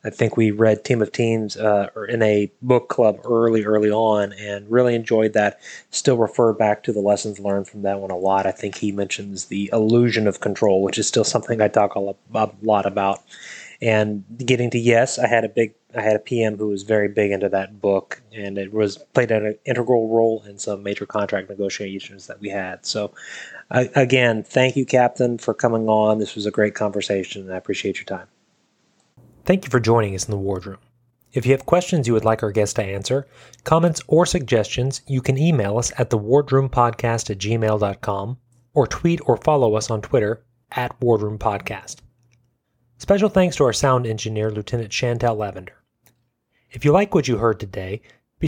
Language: English